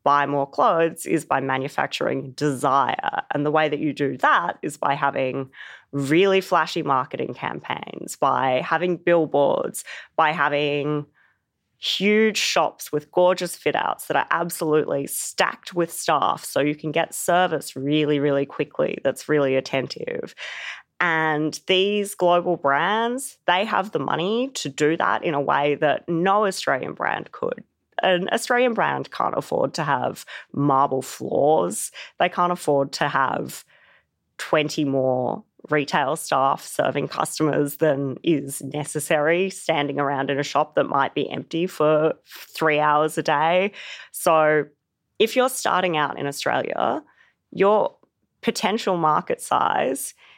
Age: 20-39